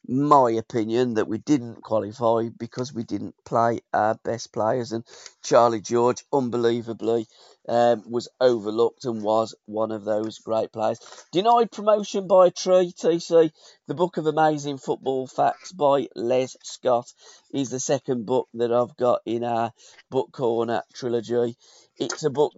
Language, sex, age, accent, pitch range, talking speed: English, male, 50-69, British, 115-135 Hz, 150 wpm